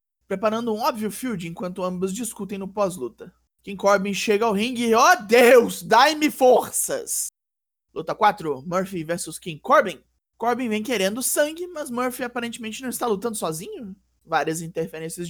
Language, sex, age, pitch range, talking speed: Portuguese, male, 20-39, 180-230 Hz, 155 wpm